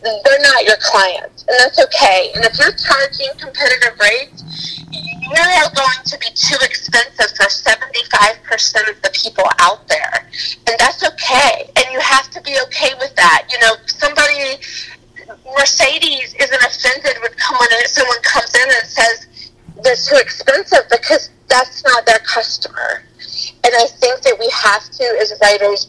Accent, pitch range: American, 215-290 Hz